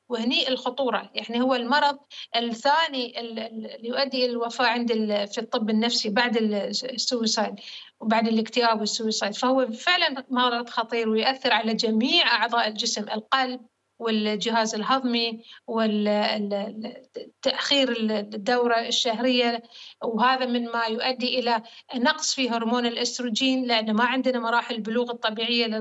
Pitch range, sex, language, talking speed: 230-260 Hz, female, Arabic, 110 wpm